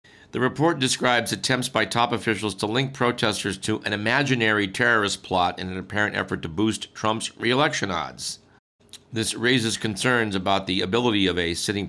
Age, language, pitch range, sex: 50-69, English, 95-115 Hz, male